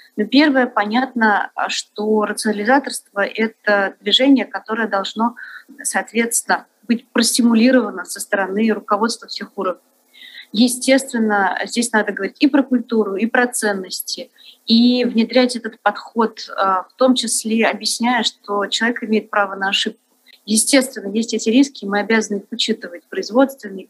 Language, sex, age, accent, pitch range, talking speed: Russian, female, 30-49, native, 205-250 Hz, 125 wpm